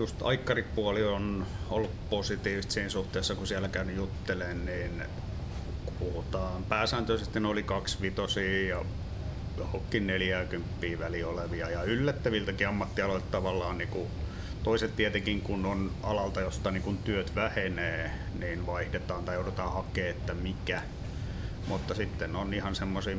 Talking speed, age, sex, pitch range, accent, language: 120 wpm, 30-49, male, 90-100 Hz, native, Finnish